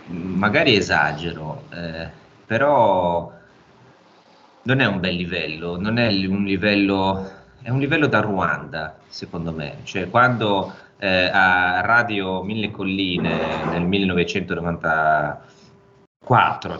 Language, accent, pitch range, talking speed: Italian, native, 80-95 Hz, 105 wpm